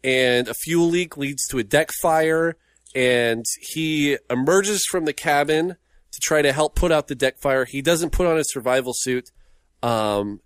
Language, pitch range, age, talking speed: English, 105-145 Hz, 30-49, 185 wpm